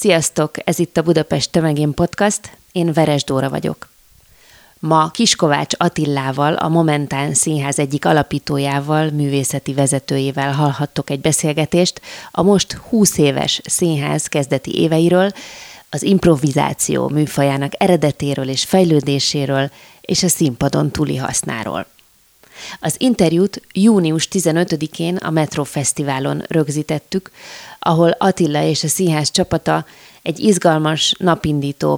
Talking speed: 110 wpm